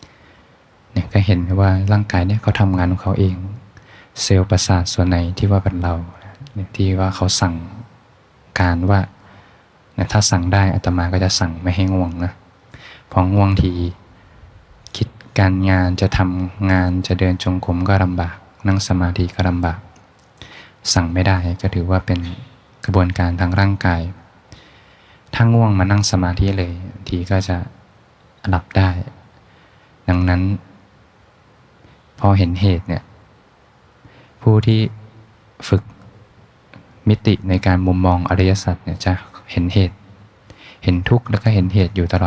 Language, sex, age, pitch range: Thai, male, 20-39, 90-105 Hz